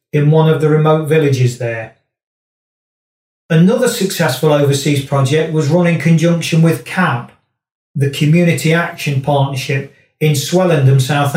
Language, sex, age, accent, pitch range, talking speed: English, male, 40-59, British, 135-165 Hz, 125 wpm